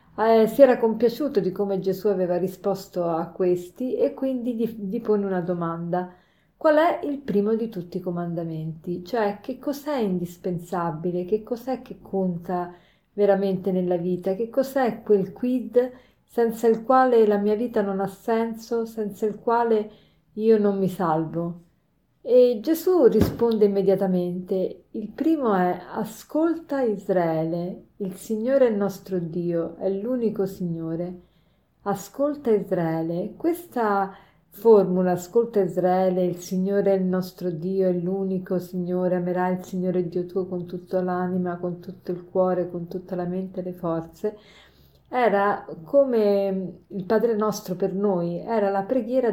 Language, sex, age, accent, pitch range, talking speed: Italian, female, 40-59, native, 180-225 Hz, 145 wpm